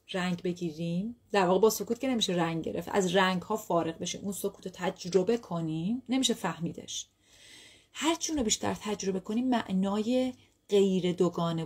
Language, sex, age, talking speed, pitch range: Persian, female, 30-49, 155 wpm, 170-230 Hz